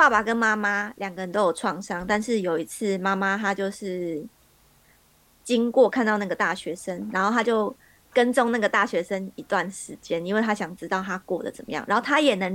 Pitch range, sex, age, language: 185-225 Hz, female, 20-39, Chinese